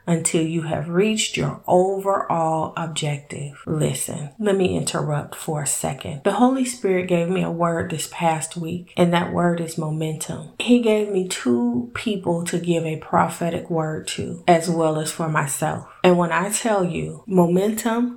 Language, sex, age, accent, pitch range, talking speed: English, female, 30-49, American, 160-190 Hz, 170 wpm